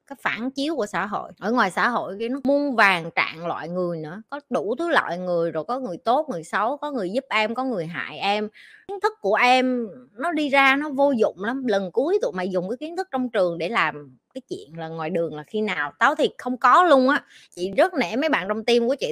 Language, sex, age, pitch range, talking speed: Vietnamese, female, 20-39, 185-255 Hz, 260 wpm